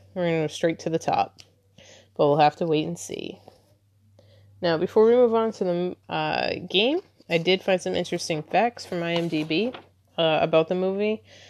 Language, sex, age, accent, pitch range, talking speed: English, female, 20-39, American, 150-185 Hz, 190 wpm